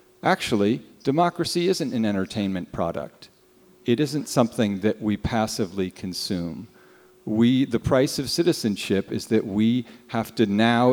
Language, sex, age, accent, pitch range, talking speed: English, male, 50-69, American, 100-120 Hz, 130 wpm